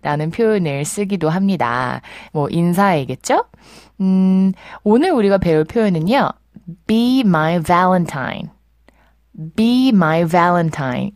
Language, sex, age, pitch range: Korean, female, 20-39, 155-230 Hz